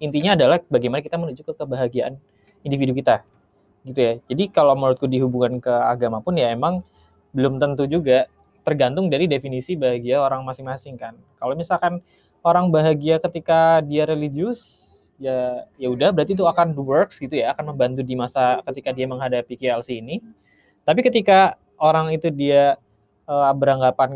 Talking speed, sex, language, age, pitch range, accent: 155 wpm, male, Indonesian, 20-39, 125-155 Hz, native